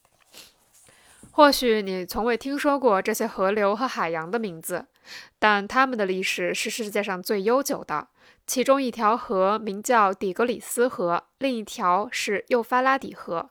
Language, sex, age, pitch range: Chinese, female, 20-39, 195-245 Hz